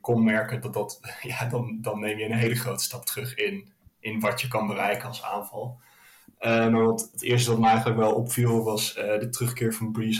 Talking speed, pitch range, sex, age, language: 225 wpm, 110-120 Hz, male, 20-39, Dutch